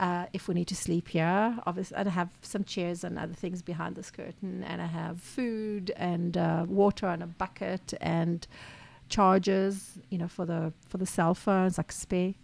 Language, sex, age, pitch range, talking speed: Hebrew, female, 50-69, 165-190 Hz, 190 wpm